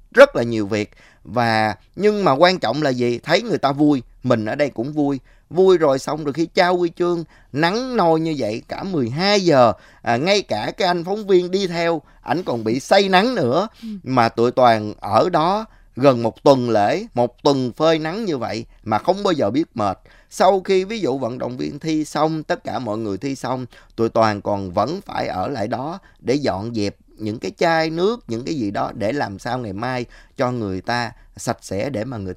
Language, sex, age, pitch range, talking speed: Vietnamese, male, 20-39, 110-165 Hz, 220 wpm